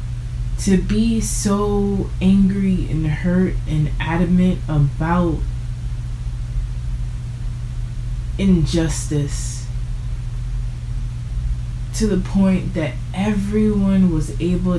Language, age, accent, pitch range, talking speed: English, 20-39, American, 120-155 Hz, 70 wpm